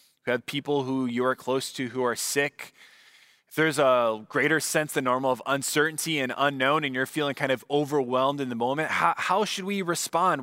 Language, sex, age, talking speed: English, male, 20-39, 205 wpm